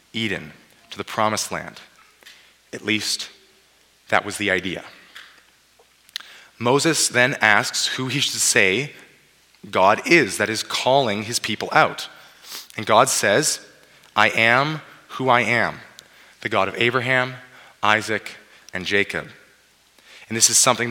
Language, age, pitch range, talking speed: English, 30-49, 105-130 Hz, 130 wpm